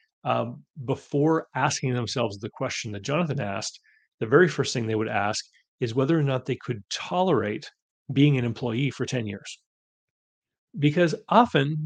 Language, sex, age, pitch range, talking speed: English, male, 30-49, 110-140 Hz, 155 wpm